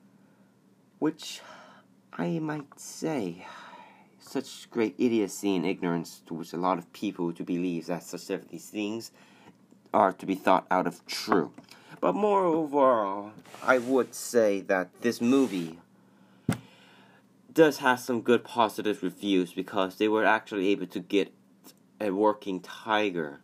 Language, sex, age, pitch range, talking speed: English, male, 30-49, 85-110 Hz, 135 wpm